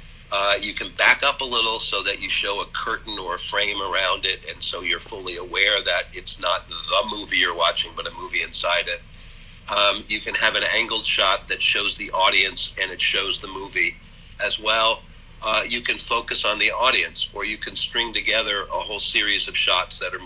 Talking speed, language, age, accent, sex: 215 wpm, English, 50-69, American, male